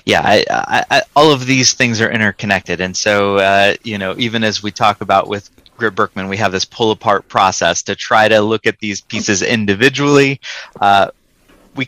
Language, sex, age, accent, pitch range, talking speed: English, male, 30-49, American, 95-115 Hz, 195 wpm